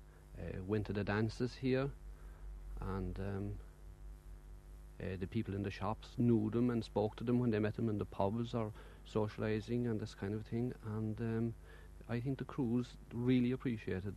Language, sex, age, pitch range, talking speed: English, male, 50-69, 85-110 Hz, 180 wpm